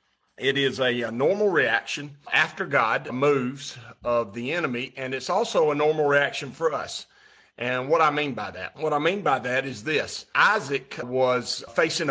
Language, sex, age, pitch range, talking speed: English, male, 40-59, 125-150 Hz, 175 wpm